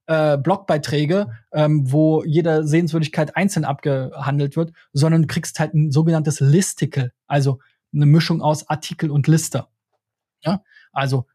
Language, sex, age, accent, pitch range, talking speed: German, male, 20-39, German, 140-175 Hz, 130 wpm